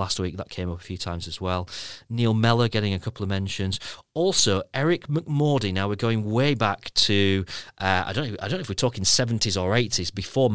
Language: English